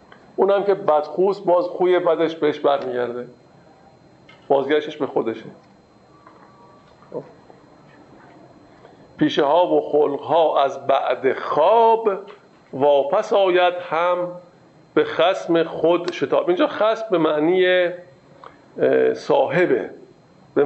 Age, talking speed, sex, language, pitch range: 50-69, 100 wpm, male, Persian, 145-190 Hz